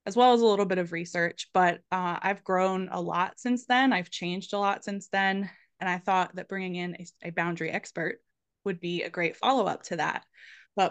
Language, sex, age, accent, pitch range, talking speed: English, female, 20-39, American, 175-205 Hz, 220 wpm